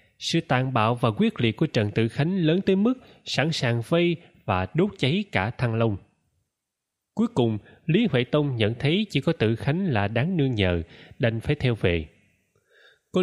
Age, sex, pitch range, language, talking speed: 20-39, male, 110-155 Hz, Vietnamese, 190 wpm